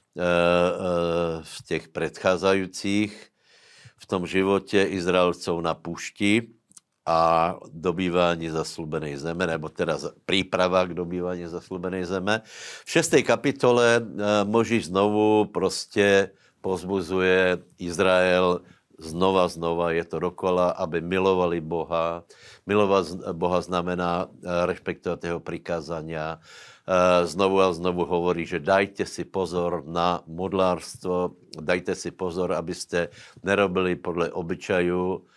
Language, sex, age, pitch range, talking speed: Slovak, male, 60-79, 85-95 Hz, 100 wpm